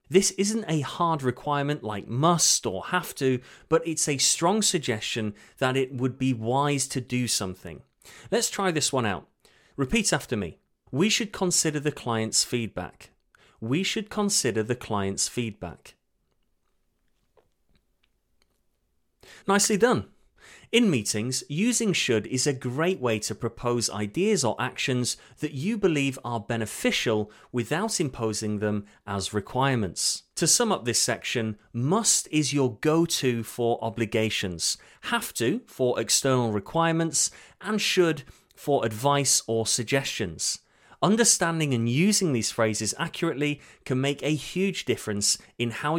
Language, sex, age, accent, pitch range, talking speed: English, male, 30-49, British, 110-165 Hz, 135 wpm